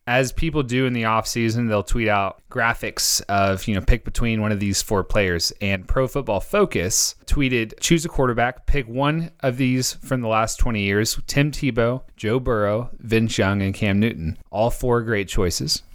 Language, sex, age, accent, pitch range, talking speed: English, male, 30-49, American, 105-150 Hz, 190 wpm